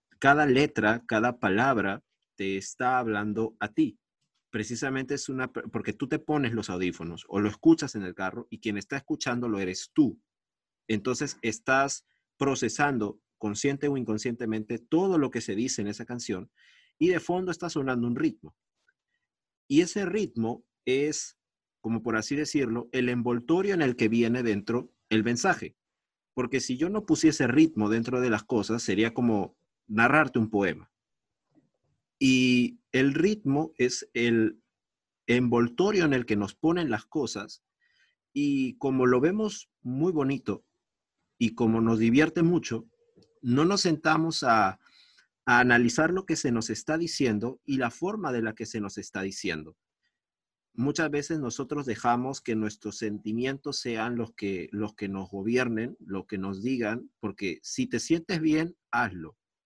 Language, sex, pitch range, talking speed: Spanish, male, 110-150 Hz, 155 wpm